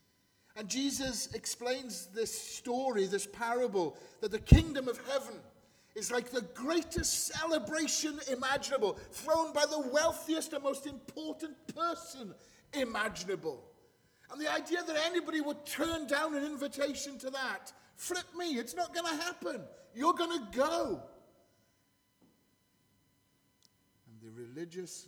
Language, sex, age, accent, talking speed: English, male, 40-59, British, 125 wpm